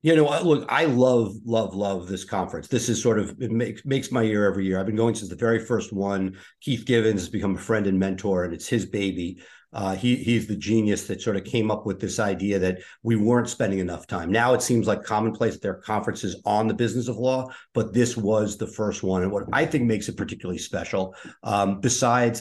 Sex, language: male, English